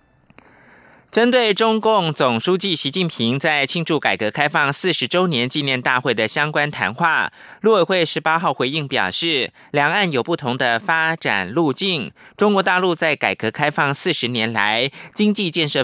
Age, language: 20-39, German